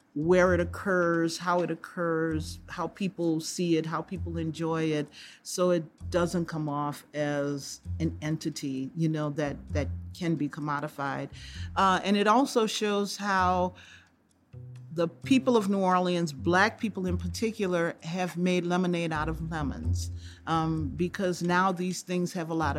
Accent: American